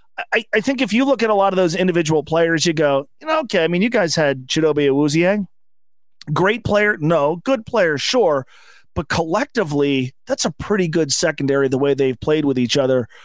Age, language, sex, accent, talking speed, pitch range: 30-49, English, male, American, 195 wpm, 145-185 Hz